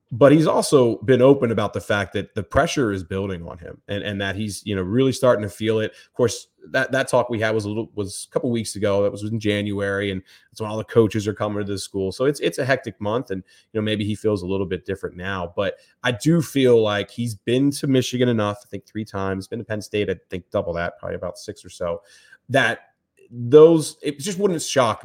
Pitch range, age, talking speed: 100-120 Hz, 30-49, 255 wpm